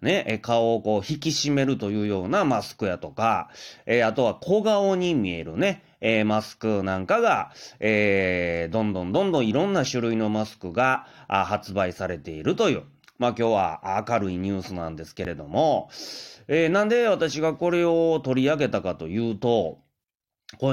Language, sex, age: Japanese, male, 30-49